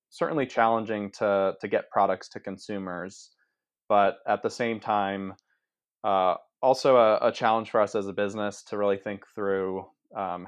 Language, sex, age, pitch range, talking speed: English, male, 20-39, 95-110 Hz, 160 wpm